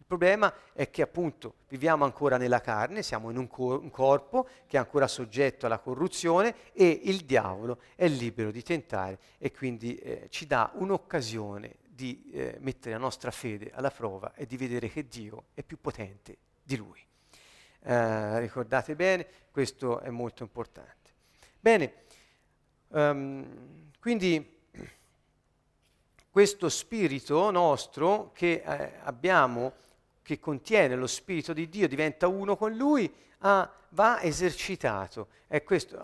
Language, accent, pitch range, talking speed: Italian, native, 130-180 Hz, 135 wpm